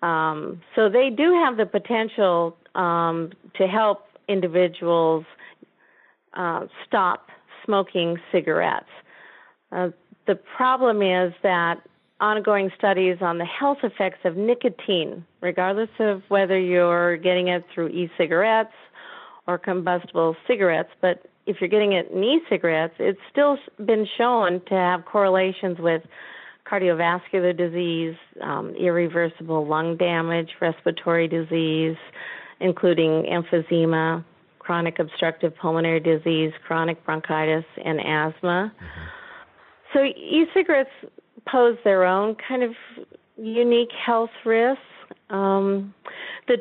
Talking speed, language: 110 wpm, English